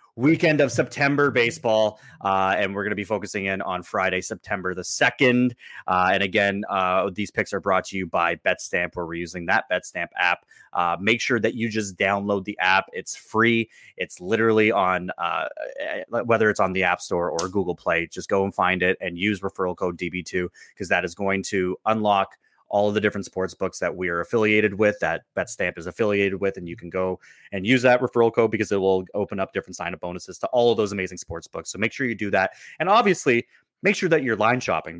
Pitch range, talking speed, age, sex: 95-130 Hz, 225 wpm, 30-49, male